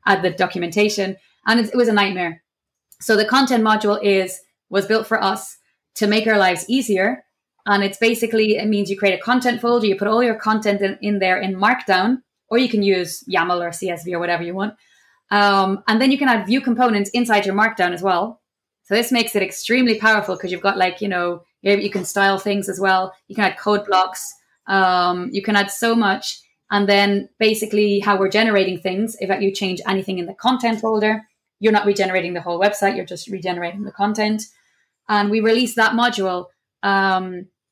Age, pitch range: 20-39, 190-220 Hz